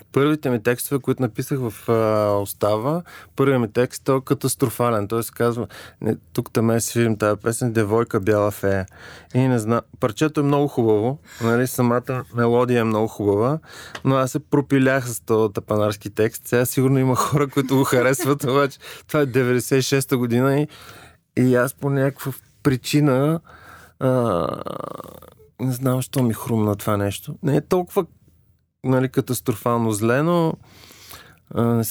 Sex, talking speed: male, 155 wpm